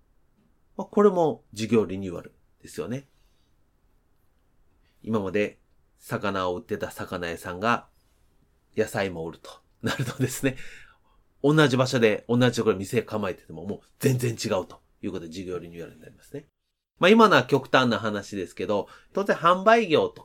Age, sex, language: 30-49, male, Japanese